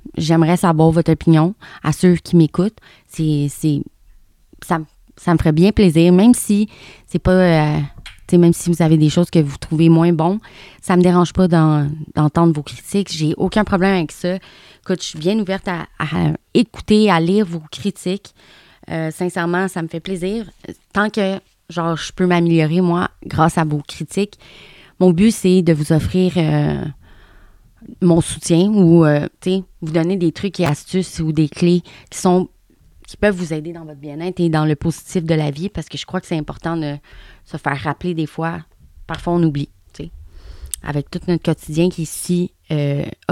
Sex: female